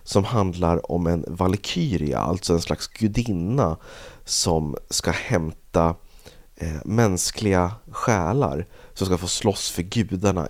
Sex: male